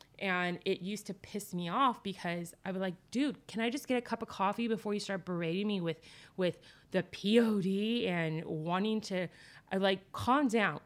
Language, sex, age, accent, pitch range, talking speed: English, female, 20-39, American, 165-225 Hz, 195 wpm